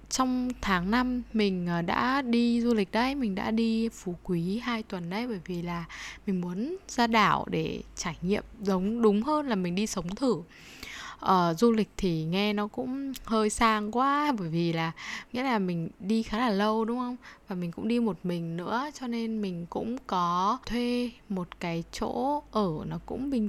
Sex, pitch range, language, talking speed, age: female, 180-230 Hz, Vietnamese, 195 wpm, 10-29